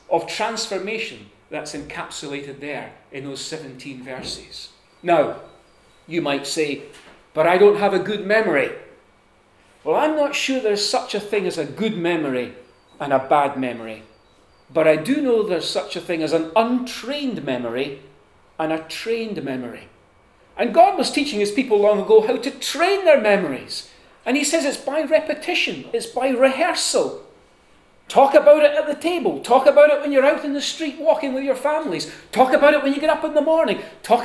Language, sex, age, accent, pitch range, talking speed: English, male, 40-59, British, 165-270 Hz, 180 wpm